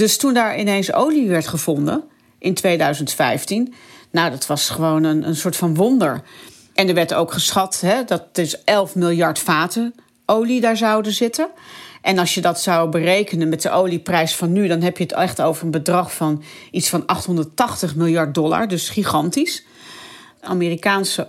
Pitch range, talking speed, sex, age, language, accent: 170-220 Hz, 175 wpm, female, 40-59, Dutch, Dutch